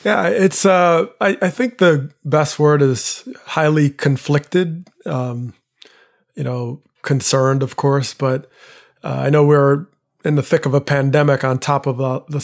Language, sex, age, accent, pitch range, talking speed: English, male, 30-49, American, 130-145 Hz, 165 wpm